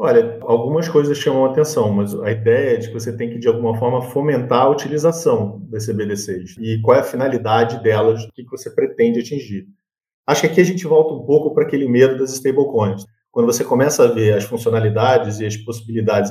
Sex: male